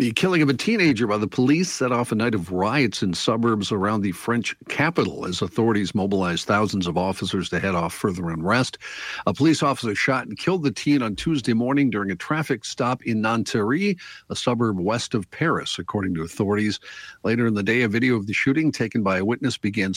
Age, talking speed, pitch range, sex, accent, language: 50-69, 210 wpm, 100-135 Hz, male, American, English